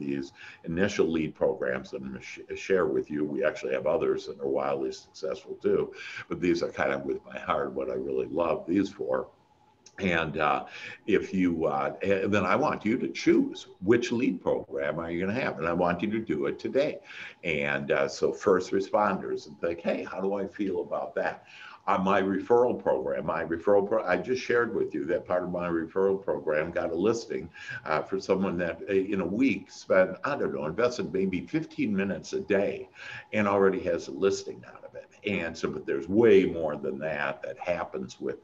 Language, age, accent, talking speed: English, 60-79, American, 210 wpm